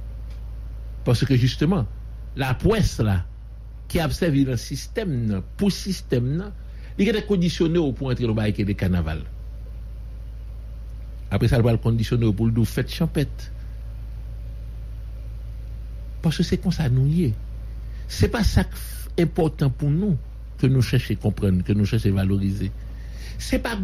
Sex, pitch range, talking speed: male, 95-150 Hz, 150 wpm